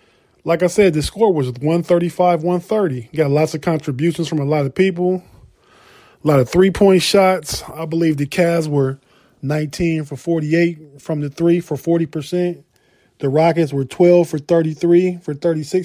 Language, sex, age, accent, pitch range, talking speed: English, male, 20-39, American, 145-180 Hz, 150 wpm